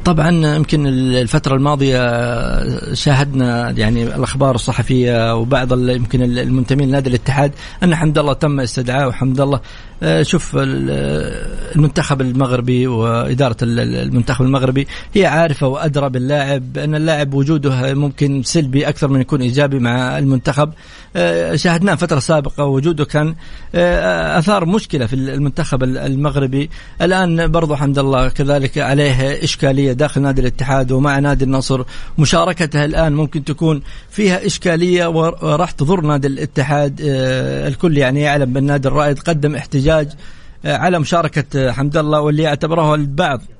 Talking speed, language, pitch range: 125 wpm, English, 130-155 Hz